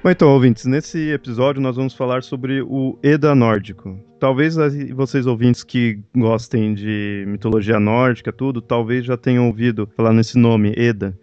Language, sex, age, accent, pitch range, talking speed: Portuguese, male, 20-39, Brazilian, 110-140 Hz, 155 wpm